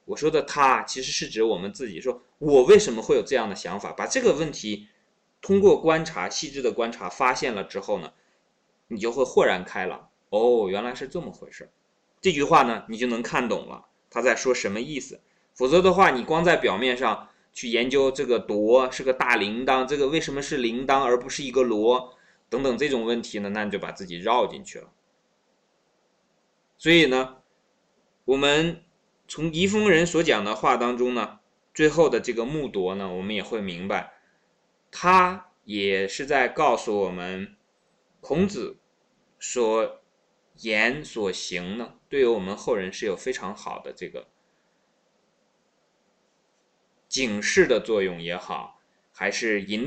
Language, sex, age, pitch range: Chinese, male, 20-39, 115-185 Hz